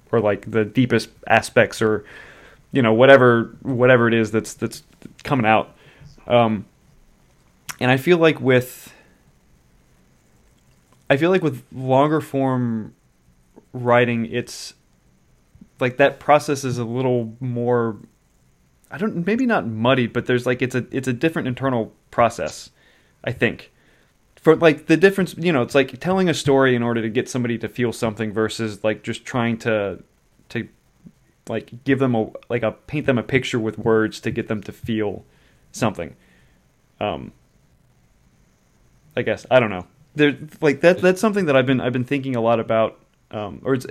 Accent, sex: American, male